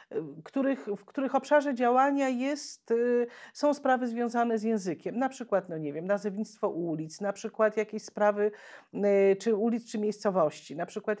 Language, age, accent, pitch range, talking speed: Polish, 40-59, native, 195-220 Hz, 145 wpm